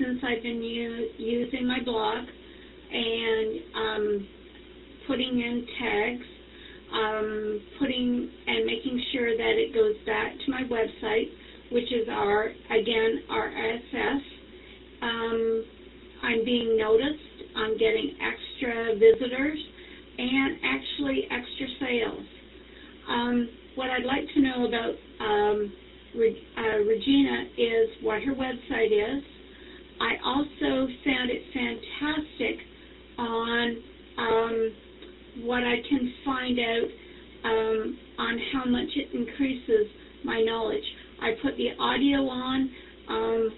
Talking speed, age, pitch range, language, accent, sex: 115 wpm, 50-69, 225-290 Hz, English, American, female